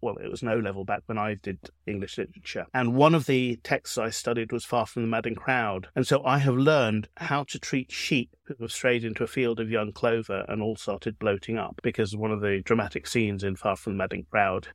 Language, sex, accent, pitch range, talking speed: English, male, British, 110-130 Hz, 240 wpm